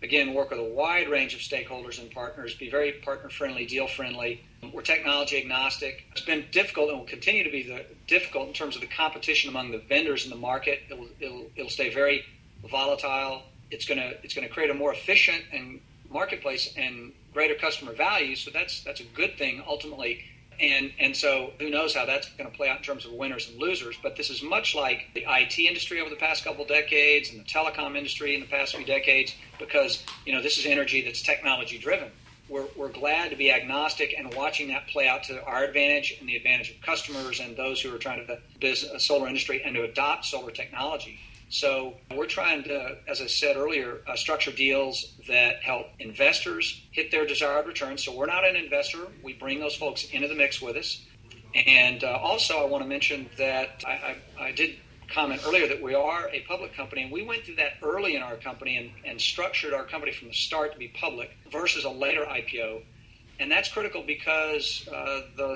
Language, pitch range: English, 125-150 Hz